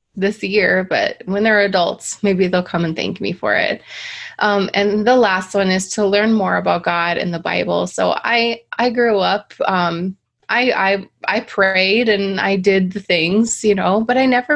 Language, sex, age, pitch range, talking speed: English, female, 20-39, 170-205 Hz, 200 wpm